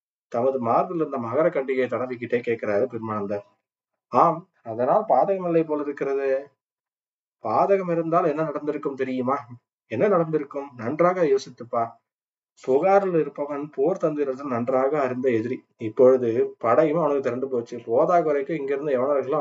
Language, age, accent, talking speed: Tamil, 20-39, native, 115 wpm